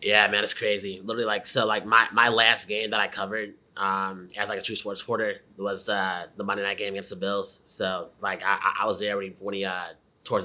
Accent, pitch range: American, 95-100 Hz